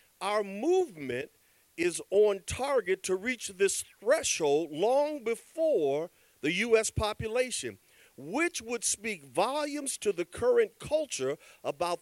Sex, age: male, 50-69